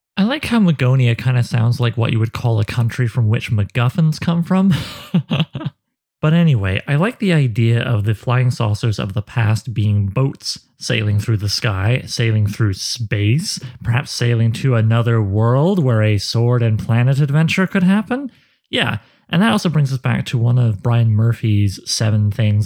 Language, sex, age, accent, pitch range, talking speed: English, male, 30-49, American, 115-155 Hz, 180 wpm